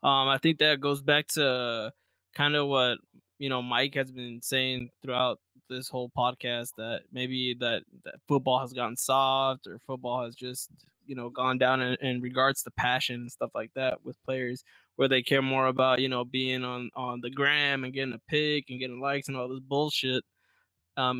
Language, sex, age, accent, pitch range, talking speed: English, male, 10-29, American, 125-145 Hz, 200 wpm